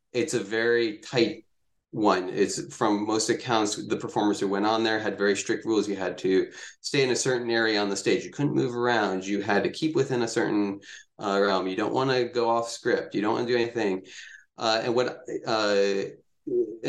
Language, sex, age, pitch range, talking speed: English, male, 20-39, 100-125 Hz, 215 wpm